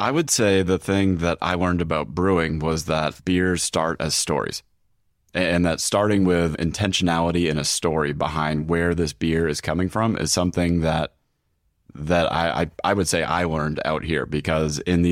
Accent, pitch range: American, 80-95 Hz